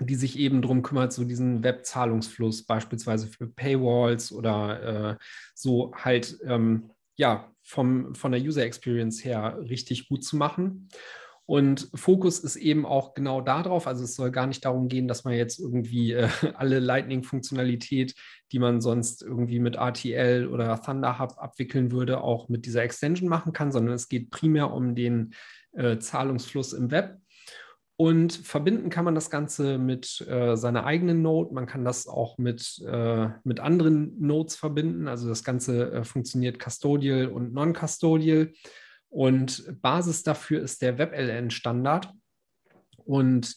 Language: German